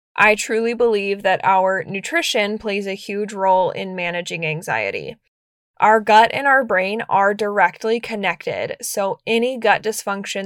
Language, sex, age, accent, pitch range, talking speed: English, female, 10-29, American, 185-215 Hz, 145 wpm